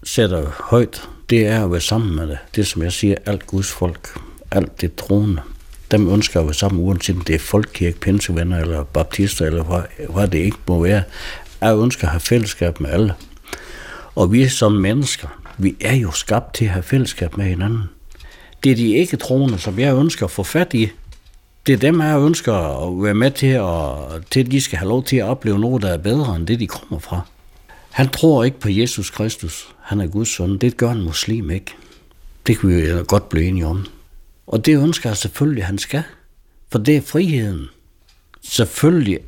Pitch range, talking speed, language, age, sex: 85-120 Hz, 205 wpm, Danish, 60-79, male